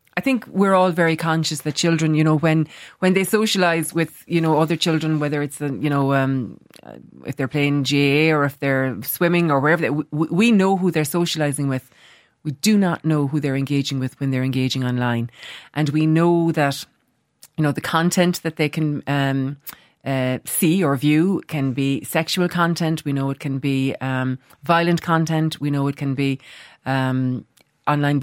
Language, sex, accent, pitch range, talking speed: English, female, Irish, 145-170 Hz, 190 wpm